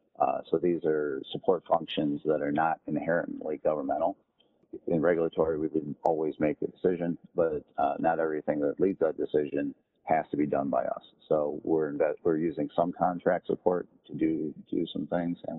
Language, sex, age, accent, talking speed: English, male, 40-59, American, 190 wpm